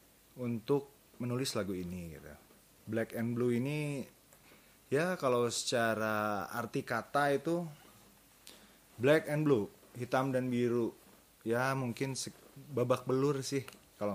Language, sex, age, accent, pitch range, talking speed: Indonesian, male, 30-49, native, 100-125 Hz, 120 wpm